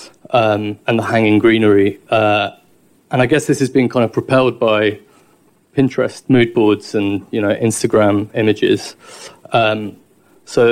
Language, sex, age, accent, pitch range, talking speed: English, male, 20-39, British, 110-125 Hz, 145 wpm